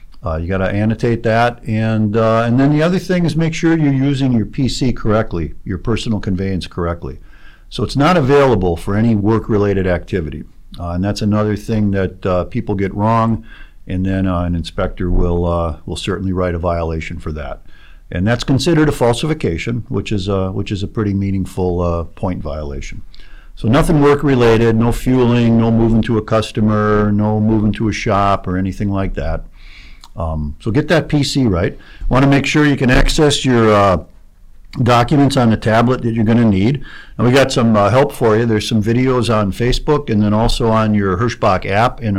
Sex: male